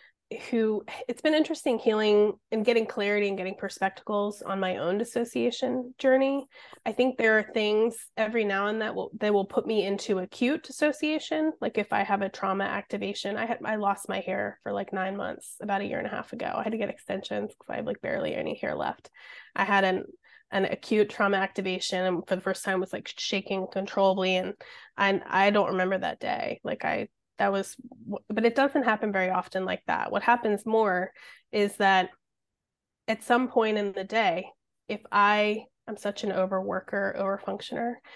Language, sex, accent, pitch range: English, female, American, 195-240 Hz